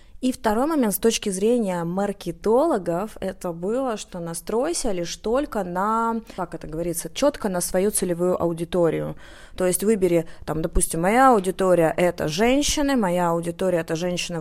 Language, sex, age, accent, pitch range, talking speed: Russian, female, 20-39, native, 175-240 Hz, 145 wpm